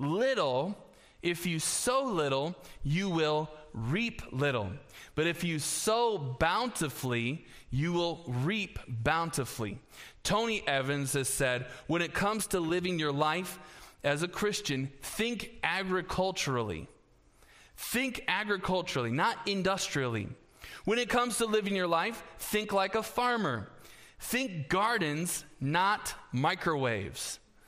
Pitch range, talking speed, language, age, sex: 140-200 Hz, 115 wpm, English, 20-39, male